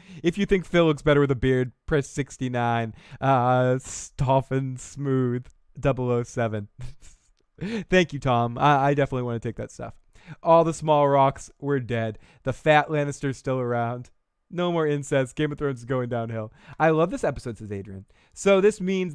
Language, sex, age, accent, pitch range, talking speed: English, male, 20-39, American, 120-155 Hz, 175 wpm